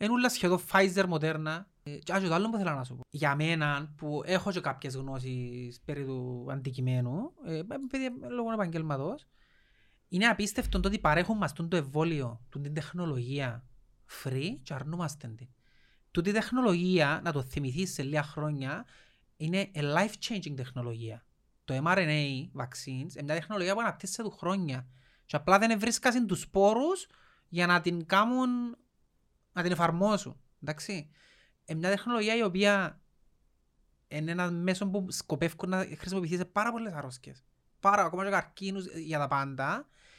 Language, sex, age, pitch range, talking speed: Greek, male, 30-49, 145-205 Hz, 145 wpm